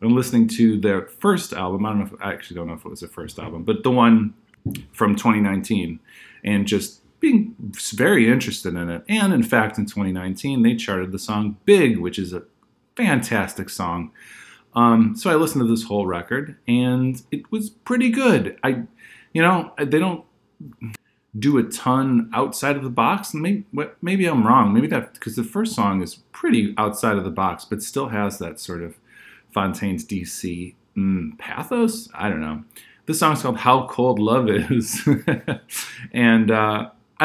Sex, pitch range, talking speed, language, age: male, 100-150 Hz, 175 wpm, English, 30-49